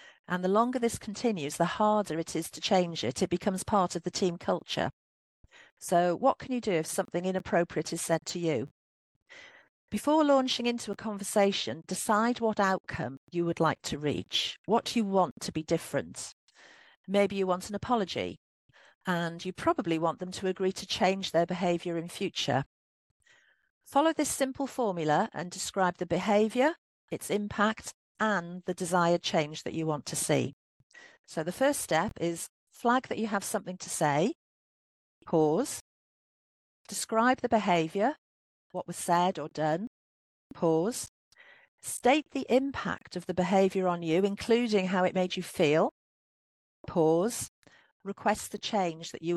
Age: 50-69